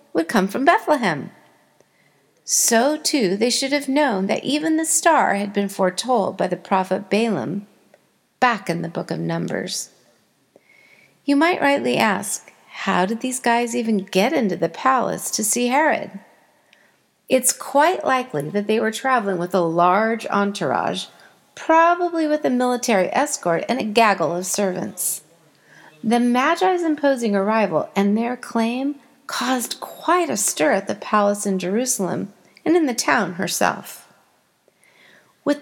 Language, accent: English, American